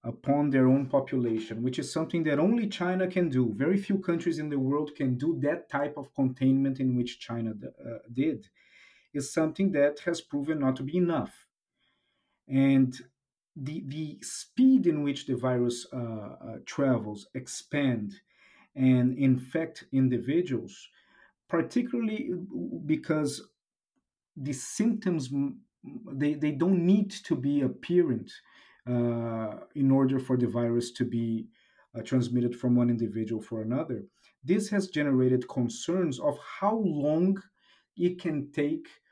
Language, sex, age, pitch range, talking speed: English, male, 50-69, 125-165 Hz, 135 wpm